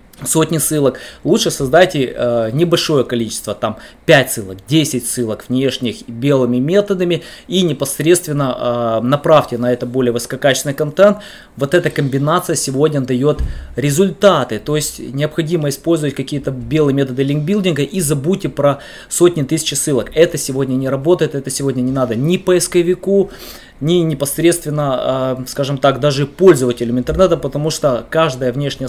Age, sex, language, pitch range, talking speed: 20-39, male, Russian, 130-160 Hz, 135 wpm